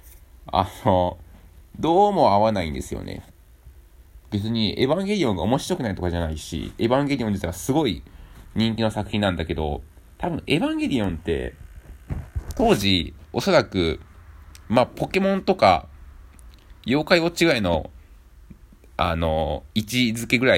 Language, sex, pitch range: Japanese, male, 75-110 Hz